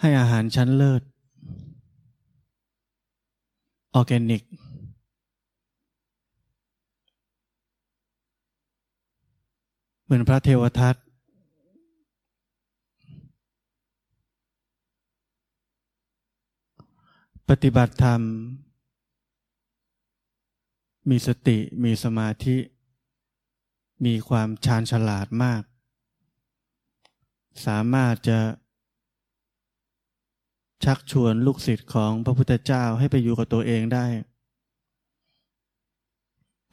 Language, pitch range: Thai, 110-130 Hz